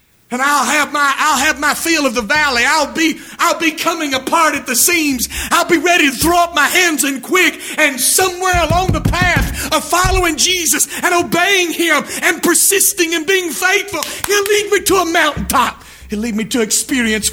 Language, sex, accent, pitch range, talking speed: English, male, American, 250-335 Hz, 195 wpm